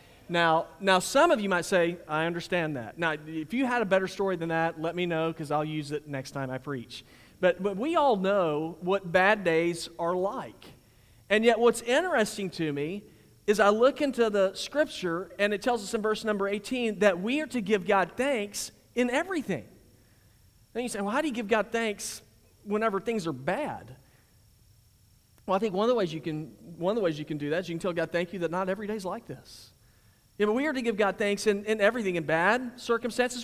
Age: 40-59